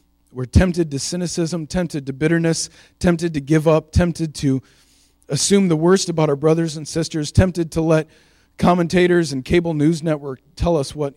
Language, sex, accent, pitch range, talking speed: English, male, American, 125-160 Hz, 170 wpm